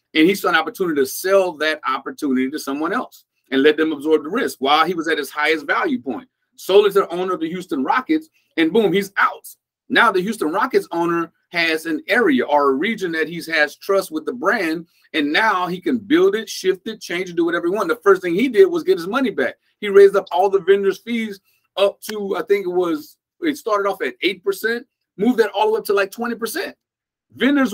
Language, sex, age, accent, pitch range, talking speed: English, male, 30-49, American, 165-270 Hz, 235 wpm